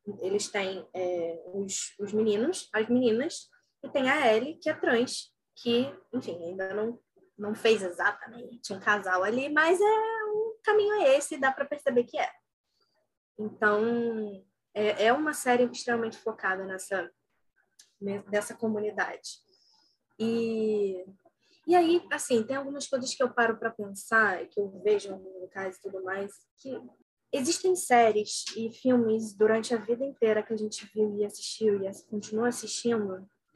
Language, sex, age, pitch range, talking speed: Portuguese, female, 10-29, 210-270 Hz, 155 wpm